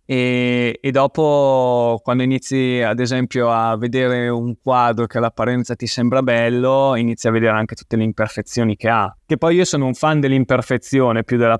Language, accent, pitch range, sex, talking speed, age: Italian, native, 115-135 Hz, male, 175 wpm, 20-39